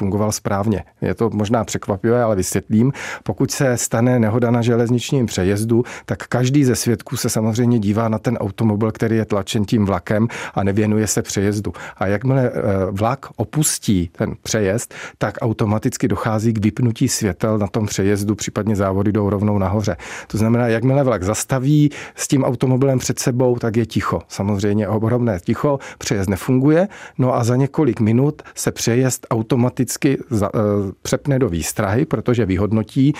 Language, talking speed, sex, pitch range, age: Czech, 155 wpm, male, 105-125 Hz, 40-59